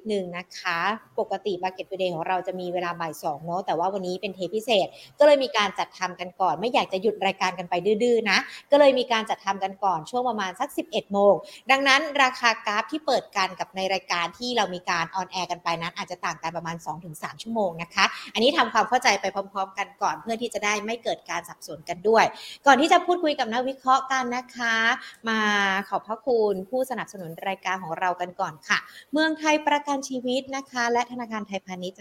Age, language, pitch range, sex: 60-79, Thai, 185-250 Hz, female